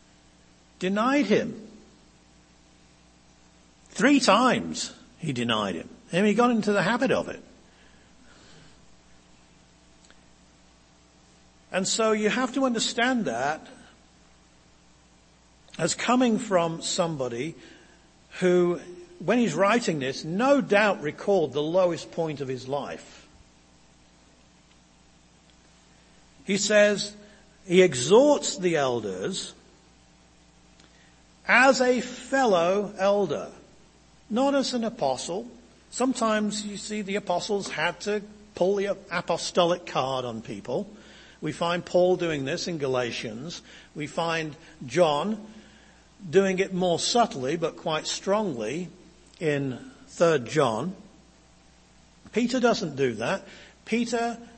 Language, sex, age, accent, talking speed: English, male, 50-69, British, 100 wpm